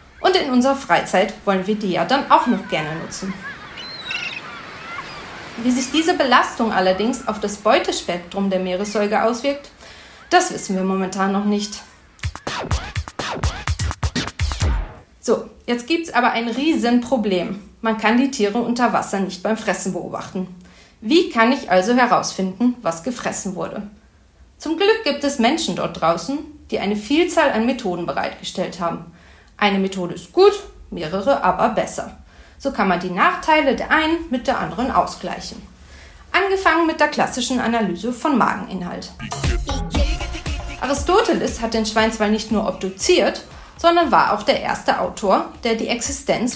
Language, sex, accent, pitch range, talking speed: German, female, German, 195-290 Hz, 140 wpm